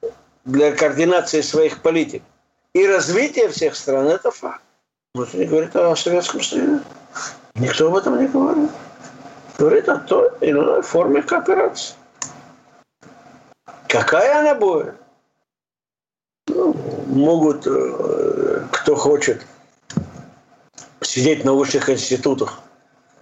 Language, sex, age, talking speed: Russian, male, 60-79, 105 wpm